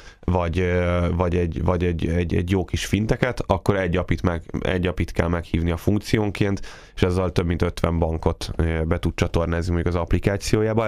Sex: male